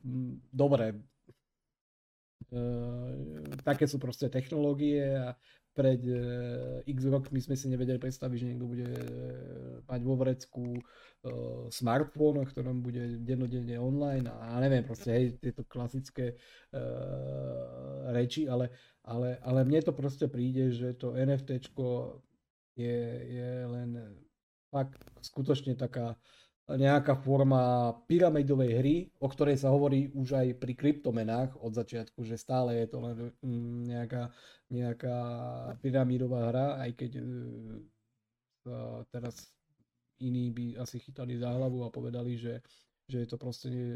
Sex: male